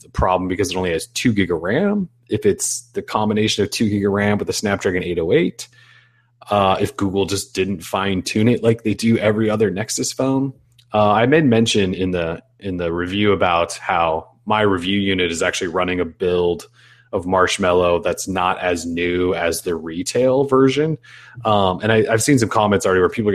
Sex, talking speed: male, 200 wpm